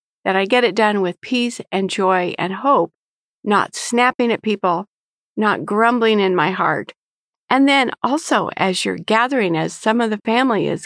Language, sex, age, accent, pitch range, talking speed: English, female, 50-69, American, 190-250 Hz, 175 wpm